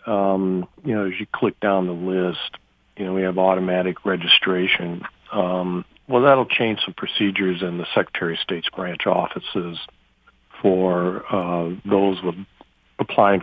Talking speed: 150 wpm